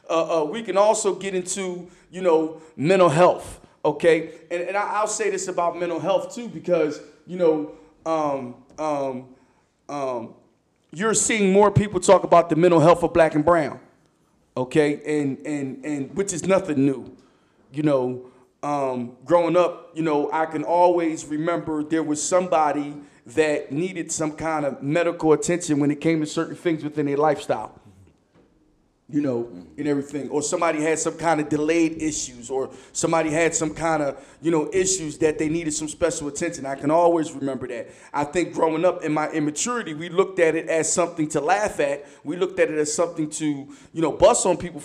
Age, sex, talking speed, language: 30-49, male, 185 wpm, English